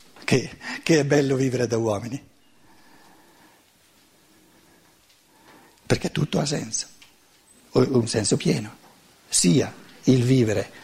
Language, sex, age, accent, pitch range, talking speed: Italian, male, 60-79, native, 100-120 Hz, 95 wpm